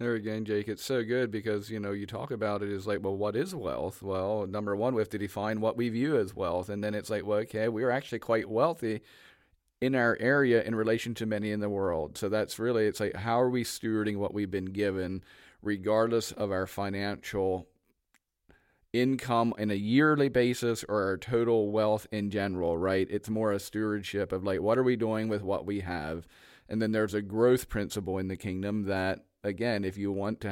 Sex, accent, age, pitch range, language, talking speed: male, American, 40-59, 100-115 Hz, English, 215 wpm